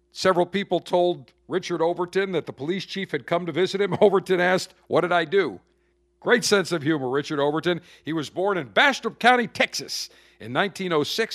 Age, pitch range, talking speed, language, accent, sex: 50-69, 130-180 Hz, 185 wpm, English, American, male